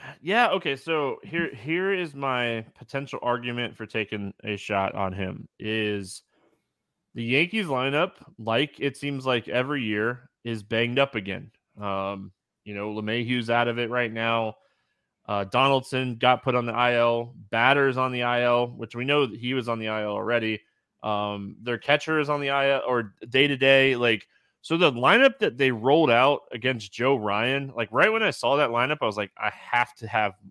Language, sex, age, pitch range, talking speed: English, male, 20-39, 115-135 Hz, 195 wpm